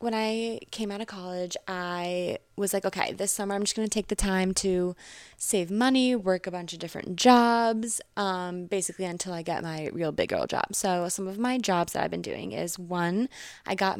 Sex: female